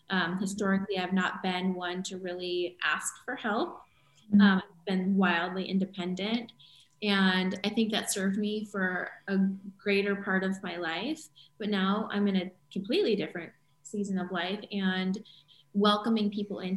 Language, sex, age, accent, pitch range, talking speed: English, female, 20-39, American, 185-210 Hz, 155 wpm